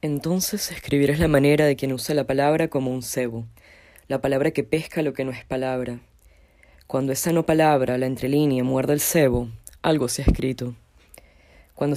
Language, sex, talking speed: Portuguese, female, 180 wpm